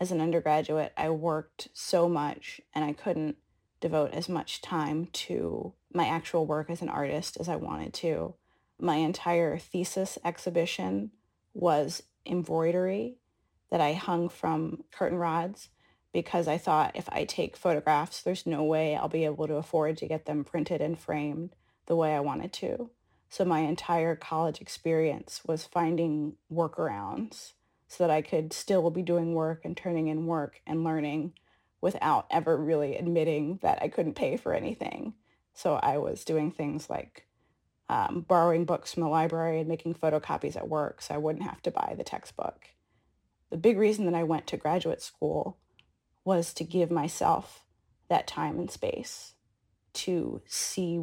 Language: English